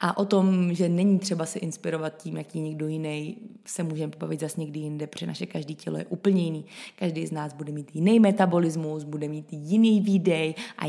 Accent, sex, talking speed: native, female, 205 wpm